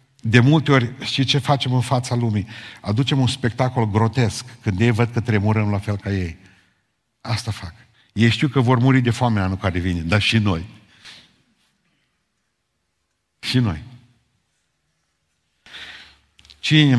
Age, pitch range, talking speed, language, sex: 50-69, 100-120 Hz, 140 wpm, Romanian, male